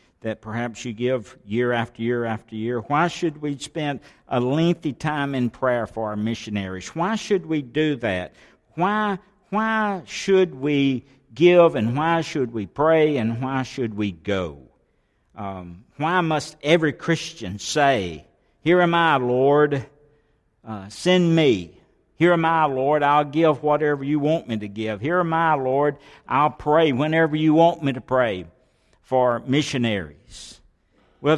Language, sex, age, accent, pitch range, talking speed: English, male, 60-79, American, 110-155 Hz, 155 wpm